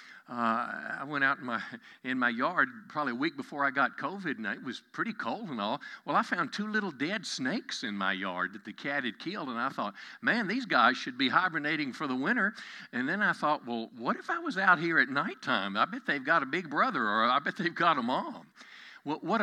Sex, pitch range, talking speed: male, 155-245 Hz, 245 wpm